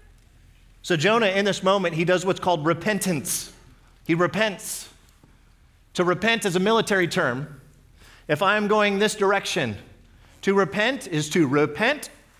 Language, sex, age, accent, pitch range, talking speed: English, male, 30-49, American, 130-195 Hz, 135 wpm